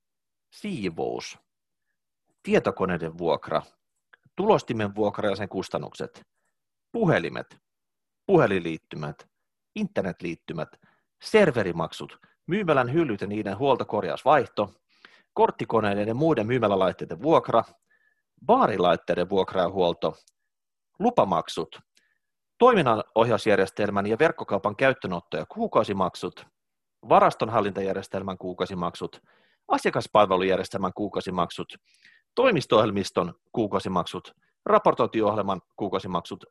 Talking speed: 65 wpm